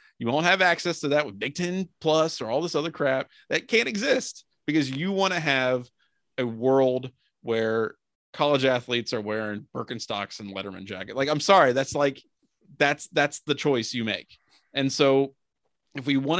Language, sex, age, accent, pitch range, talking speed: English, male, 30-49, American, 115-150 Hz, 185 wpm